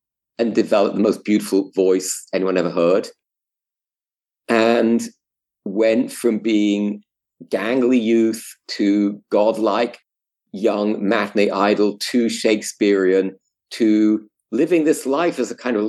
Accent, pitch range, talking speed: British, 100-120 Hz, 115 wpm